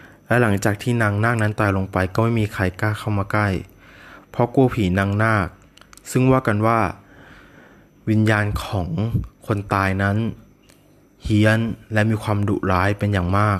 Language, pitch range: Thai, 95-110 Hz